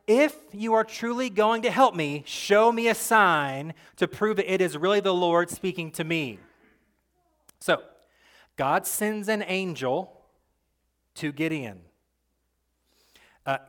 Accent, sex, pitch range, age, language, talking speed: American, male, 165-240 Hz, 30-49, English, 135 wpm